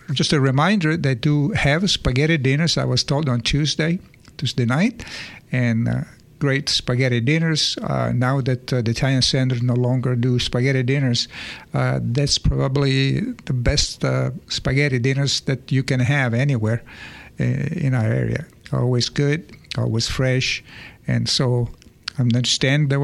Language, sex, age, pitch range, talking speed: English, male, 50-69, 125-155 Hz, 150 wpm